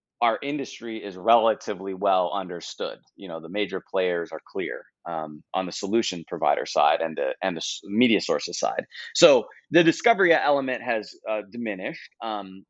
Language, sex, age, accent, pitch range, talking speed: English, male, 30-49, American, 90-115 Hz, 160 wpm